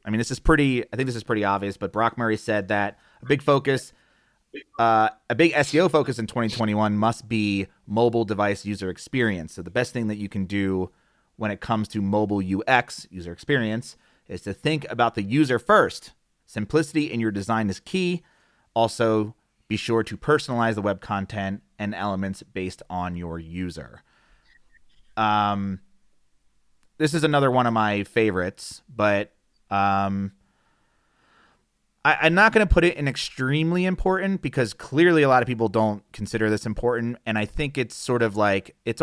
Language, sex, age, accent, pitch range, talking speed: English, male, 30-49, American, 105-140 Hz, 175 wpm